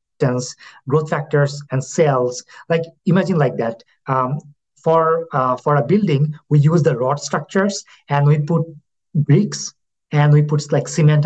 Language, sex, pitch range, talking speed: English, male, 130-160 Hz, 150 wpm